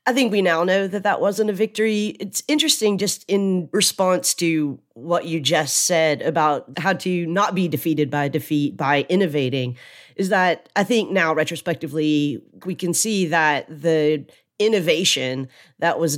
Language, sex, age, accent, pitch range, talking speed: English, female, 30-49, American, 150-185 Hz, 165 wpm